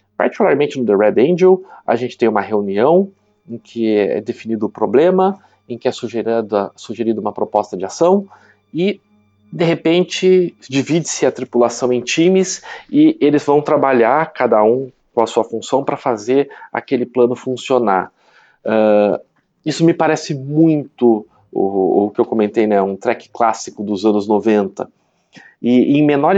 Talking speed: 150 wpm